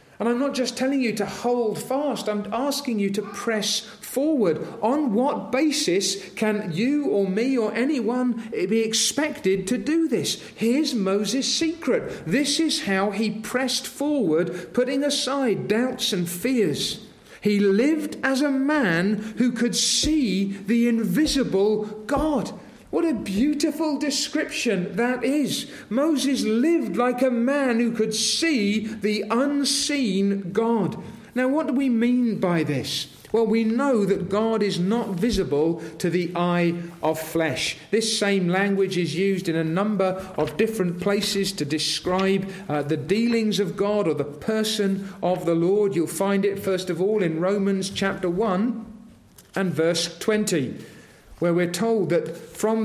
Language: English